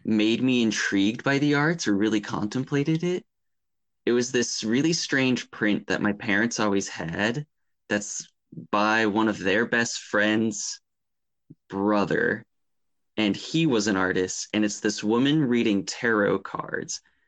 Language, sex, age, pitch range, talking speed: English, male, 20-39, 100-125 Hz, 140 wpm